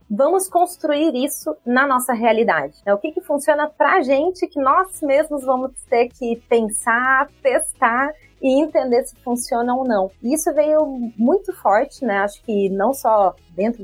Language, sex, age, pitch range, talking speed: Portuguese, female, 30-49, 215-280 Hz, 160 wpm